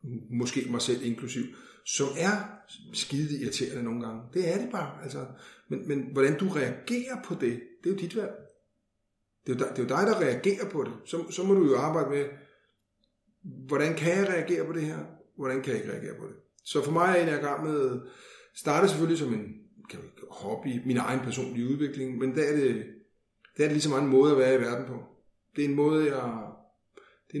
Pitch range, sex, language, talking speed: 125-155 Hz, male, Danish, 215 wpm